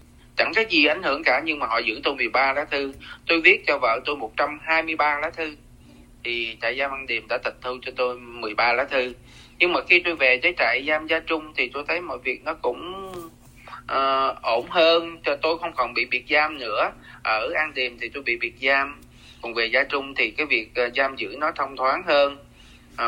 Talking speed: 225 wpm